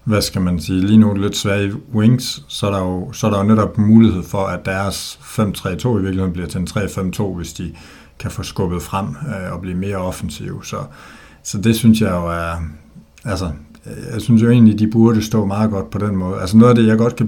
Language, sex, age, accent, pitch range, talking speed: Danish, male, 60-79, native, 90-110 Hz, 235 wpm